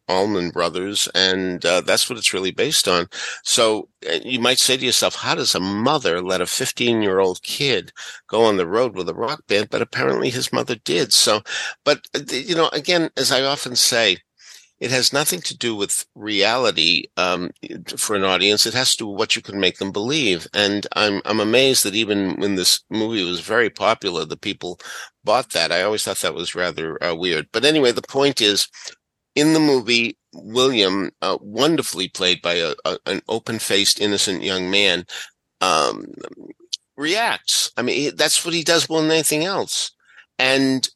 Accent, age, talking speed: American, 50-69, 190 wpm